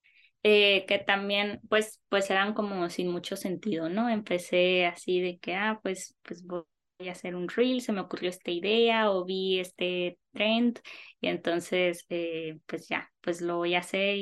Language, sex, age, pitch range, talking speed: Spanish, female, 20-39, 180-215 Hz, 175 wpm